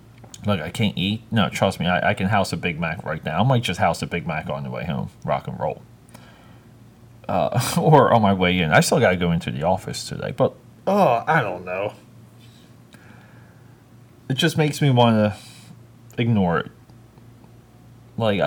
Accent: American